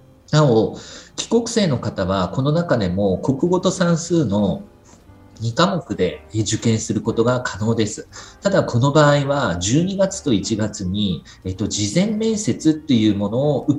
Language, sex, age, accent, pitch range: Japanese, male, 50-69, native, 100-150 Hz